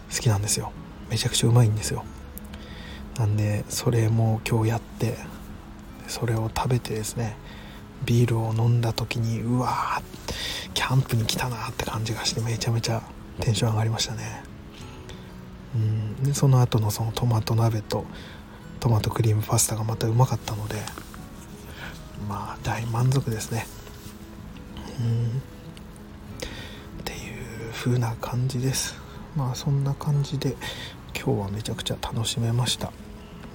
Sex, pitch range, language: male, 105-120 Hz, Japanese